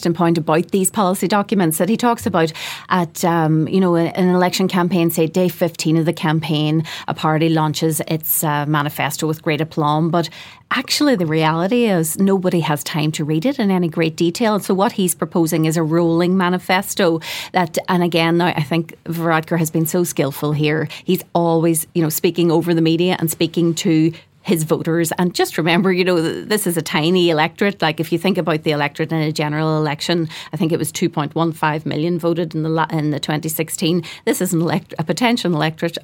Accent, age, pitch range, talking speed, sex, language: Irish, 30-49, 160-180 Hz, 205 wpm, female, English